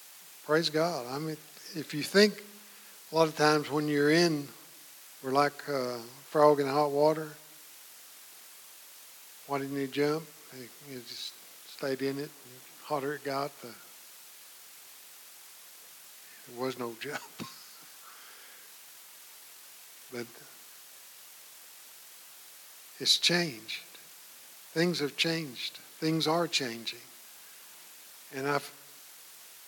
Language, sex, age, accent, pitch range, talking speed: English, male, 60-79, American, 130-155 Hz, 100 wpm